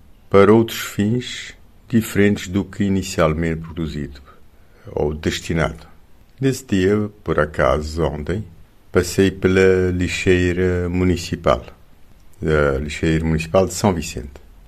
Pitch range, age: 75-95 Hz, 50-69